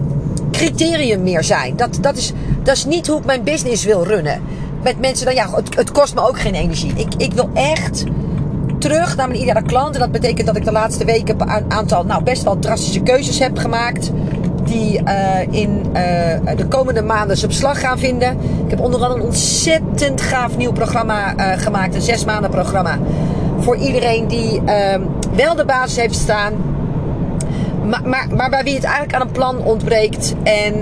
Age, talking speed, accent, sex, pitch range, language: 40-59, 195 wpm, Dutch, female, 165-220 Hz, Dutch